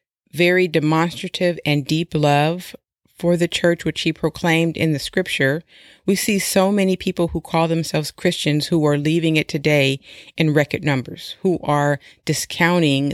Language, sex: English, female